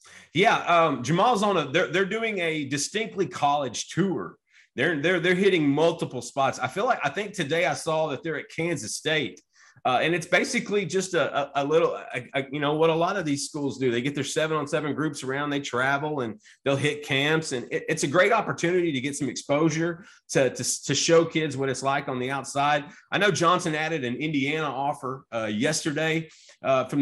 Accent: American